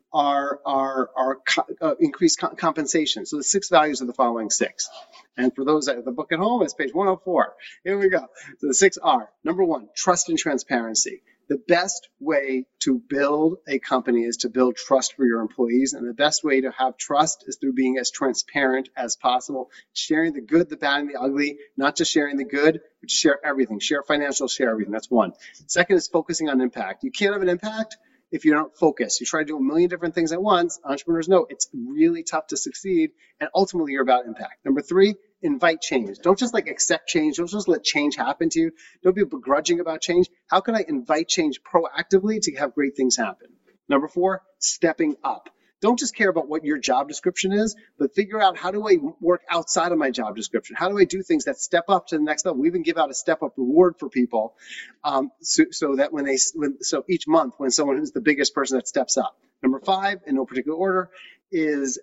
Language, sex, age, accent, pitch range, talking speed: English, male, 30-49, American, 135-195 Hz, 225 wpm